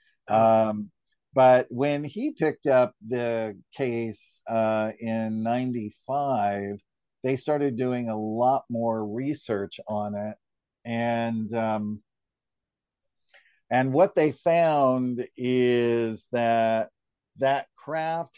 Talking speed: 100 wpm